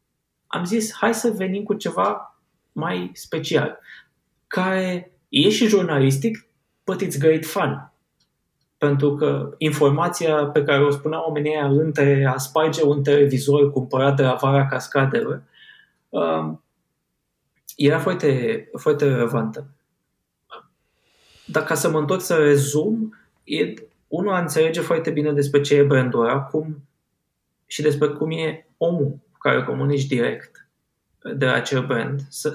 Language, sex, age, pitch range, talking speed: Romanian, male, 20-39, 140-160 Hz, 125 wpm